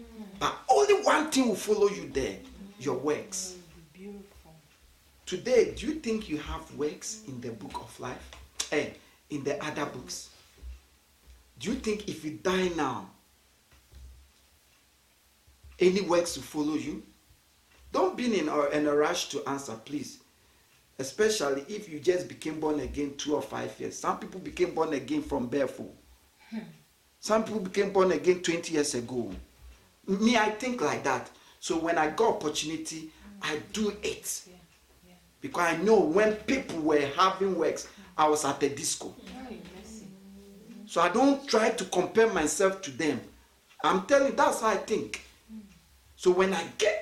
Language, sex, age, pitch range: English, male, 50-69, 145-215 Hz